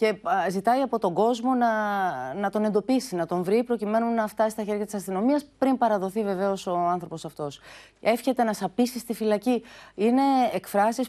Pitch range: 185-245 Hz